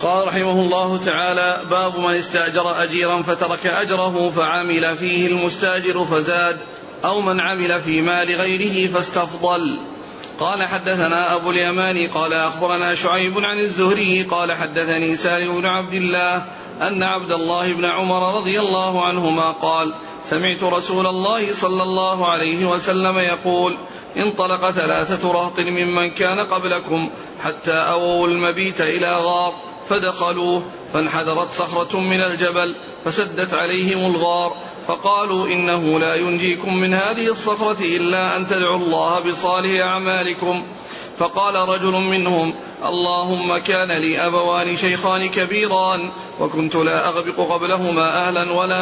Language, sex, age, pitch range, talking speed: Arabic, male, 40-59, 175-185 Hz, 125 wpm